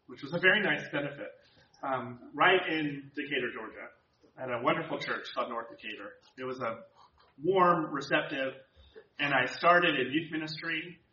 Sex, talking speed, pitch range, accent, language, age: male, 155 wpm, 130-175 Hz, American, English, 30-49